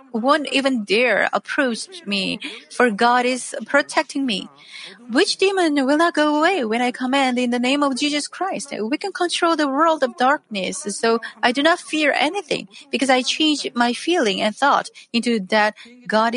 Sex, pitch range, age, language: female, 215-290 Hz, 40-59, Korean